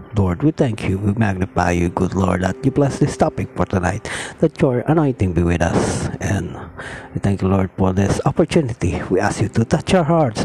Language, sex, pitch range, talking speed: Filipino, male, 100-125 Hz, 210 wpm